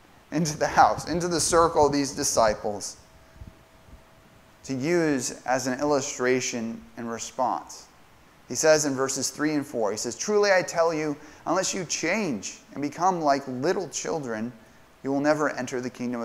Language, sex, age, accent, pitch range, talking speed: English, male, 30-49, American, 120-155 Hz, 160 wpm